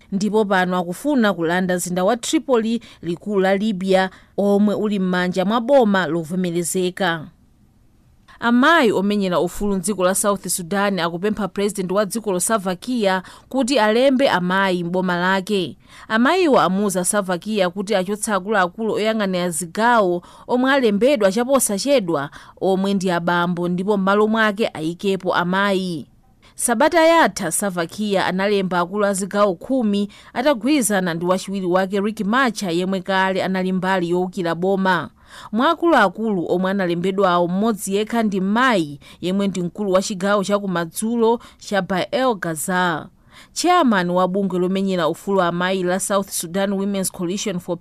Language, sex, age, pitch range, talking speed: English, female, 40-59, 180-220 Hz, 125 wpm